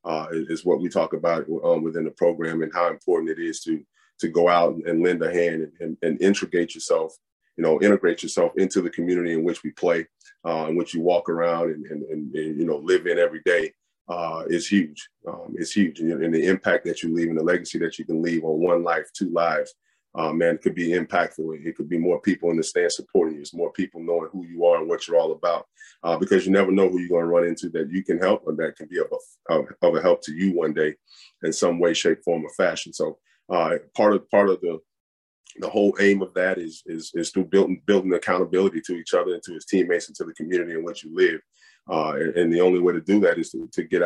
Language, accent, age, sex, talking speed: English, American, 30-49, male, 260 wpm